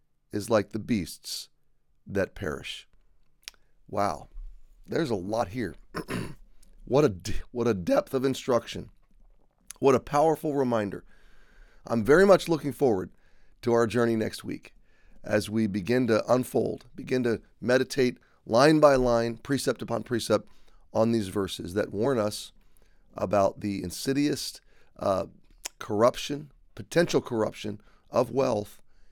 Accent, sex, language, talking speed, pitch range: American, male, English, 130 wpm, 105-140 Hz